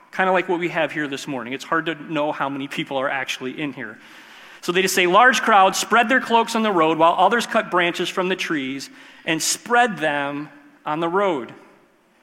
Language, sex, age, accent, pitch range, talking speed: English, male, 40-59, American, 160-215 Hz, 220 wpm